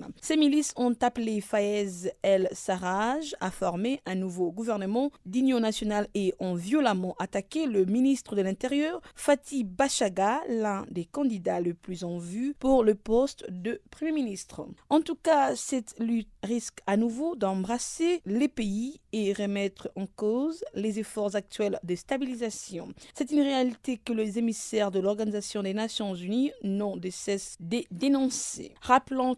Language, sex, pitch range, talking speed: French, female, 195-255 Hz, 150 wpm